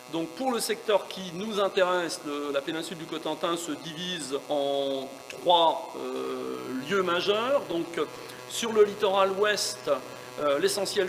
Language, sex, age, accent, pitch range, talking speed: French, male, 40-59, French, 150-215 Hz, 140 wpm